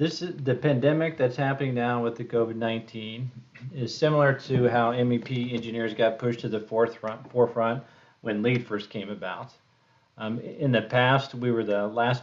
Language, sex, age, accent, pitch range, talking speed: English, male, 40-59, American, 115-135 Hz, 165 wpm